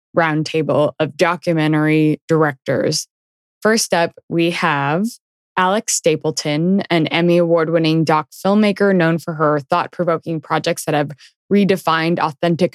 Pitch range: 150-180 Hz